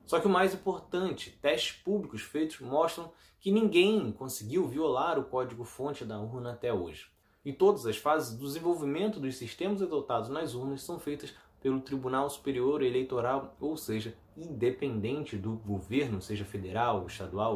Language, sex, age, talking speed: Portuguese, male, 20-39, 150 wpm